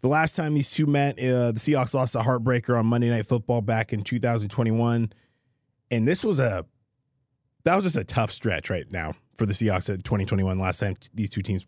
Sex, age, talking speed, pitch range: male, 20-39, 215 wpm, 105-125 Hz